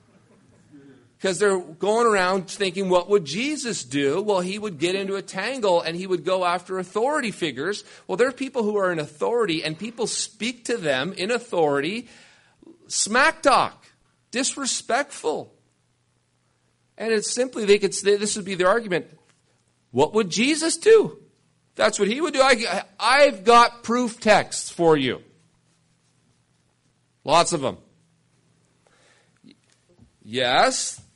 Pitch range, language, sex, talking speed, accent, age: 165-210 Hz, English, male, 140 wpm, American, 40-59